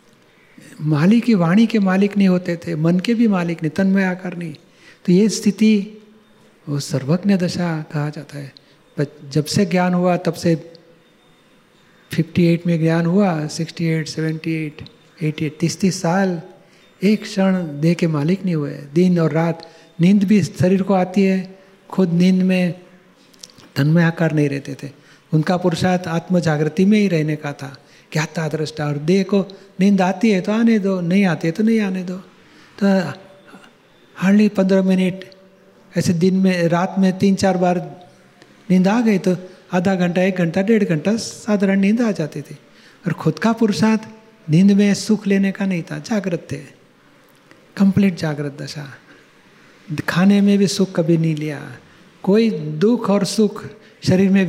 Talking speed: 135 wpm